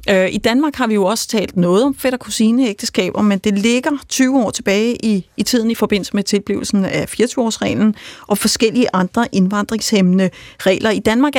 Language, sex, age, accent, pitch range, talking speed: Danish, female, 30-49, native, 190-245 Hz, 180 wpm